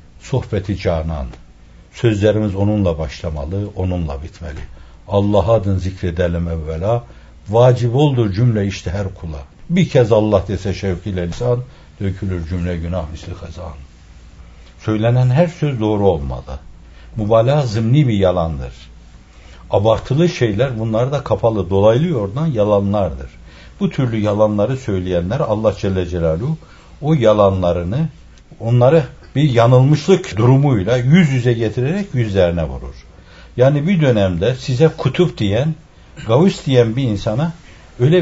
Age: 60-79